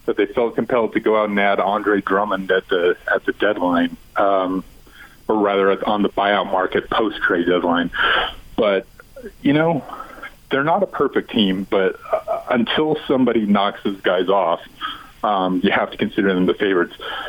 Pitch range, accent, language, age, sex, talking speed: 95-110 Hz, American, English, 40-59, male, 165 wpm